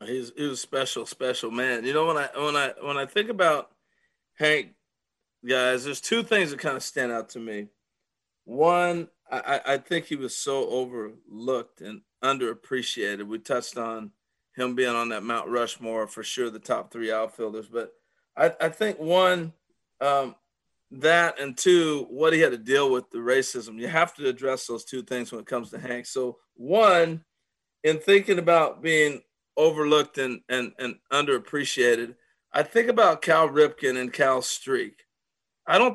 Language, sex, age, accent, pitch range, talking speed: English, male, 40-59, American, 125-170 Hz, 170 wpm